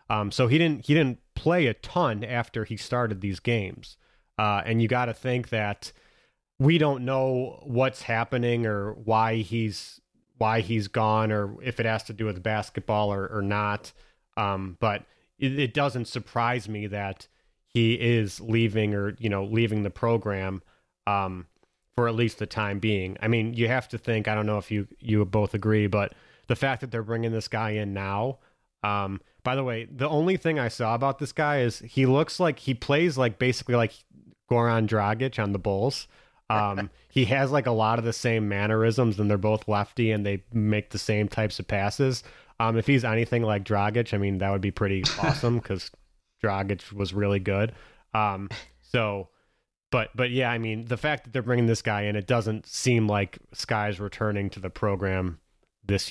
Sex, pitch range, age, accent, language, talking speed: male, 105-120 Hz, 30-49, American, English, 195 wpm